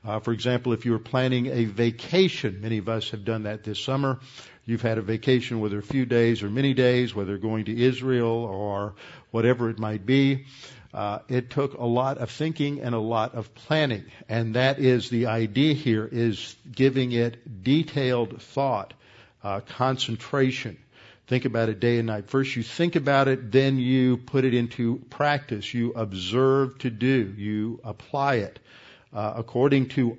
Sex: male